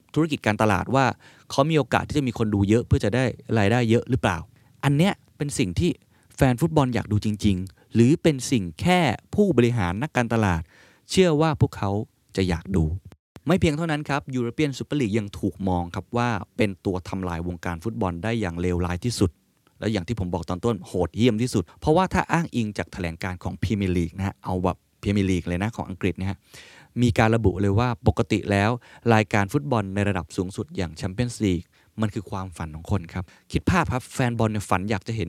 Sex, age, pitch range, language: male, 20-39, 95-130 Hz, Thai